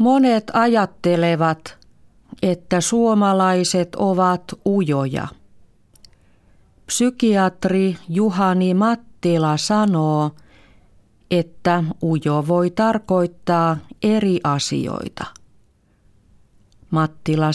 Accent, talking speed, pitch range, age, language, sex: native, 60 wpm, 145-190 Hz, 40-59, Finnish, female